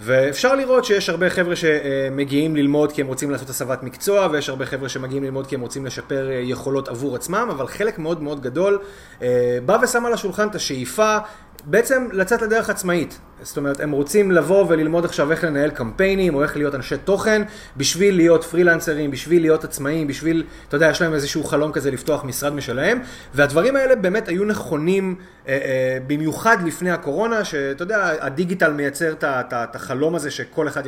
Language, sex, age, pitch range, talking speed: Hebrew, male, 30-49, 135-175 Hz, 170 wpm